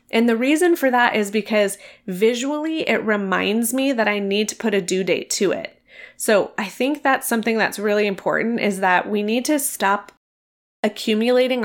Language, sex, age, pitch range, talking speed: English, female, 20-39, 195-235 Hz, 185 wpm